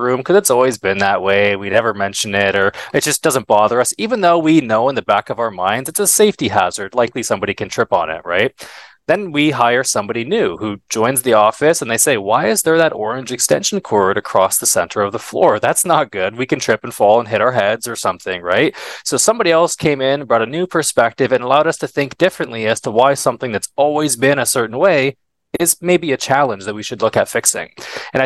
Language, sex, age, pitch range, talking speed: English, male, 20-39, 110-155 Hz, 240 wpm